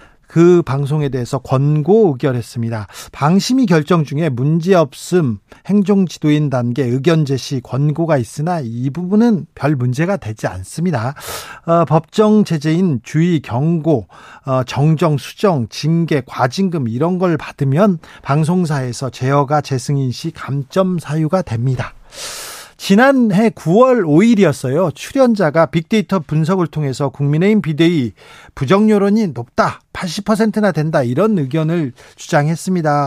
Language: Korean